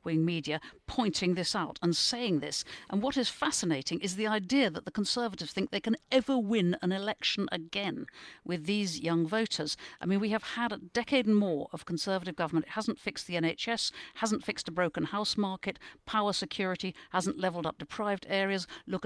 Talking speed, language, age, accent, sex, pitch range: 190 wpm, English, 50-69, British, female, 165-220 Hz